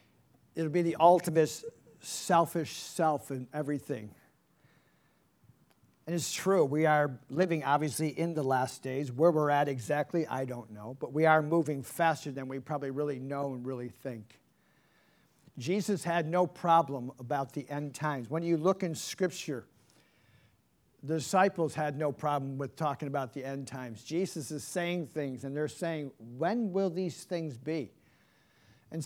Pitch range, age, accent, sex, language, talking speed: 140-175 Hz, 50-69, American, male, English, 155 wpm